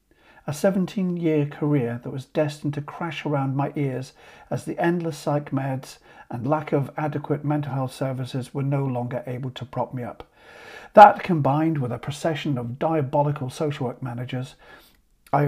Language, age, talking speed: English, 50-69, 160 wpm